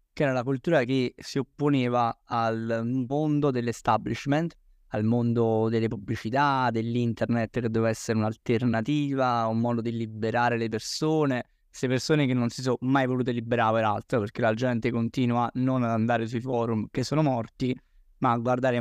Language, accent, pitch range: Italian, native, 115-135 Hz